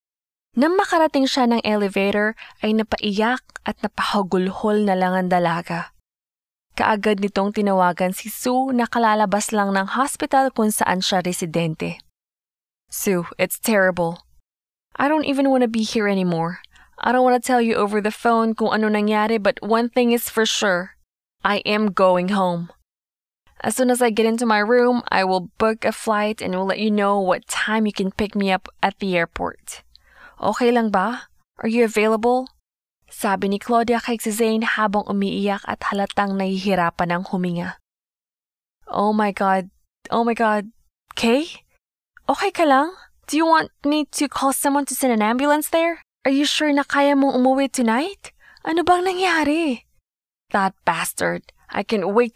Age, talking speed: 20-39, 165 wpm